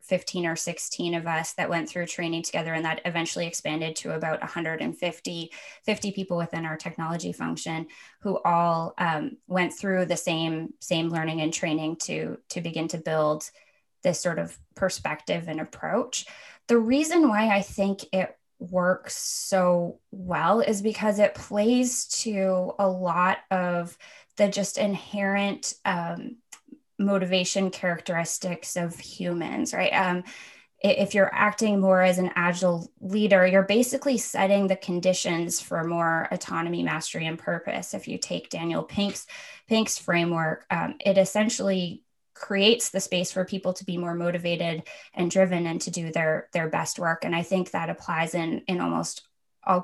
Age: 20-39